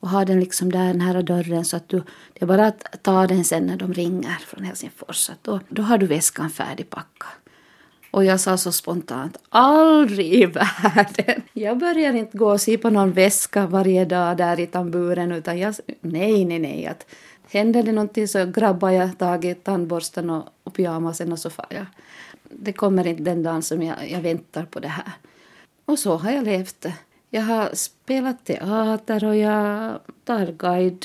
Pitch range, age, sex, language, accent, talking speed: 175-220 Hz, 30-49, female, Swedish, native, 185 wpm